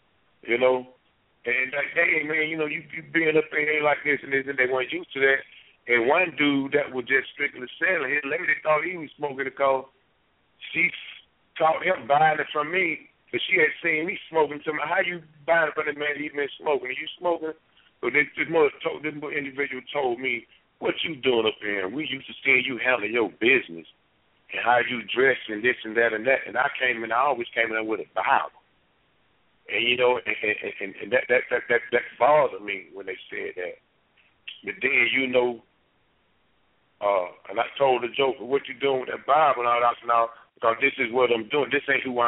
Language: English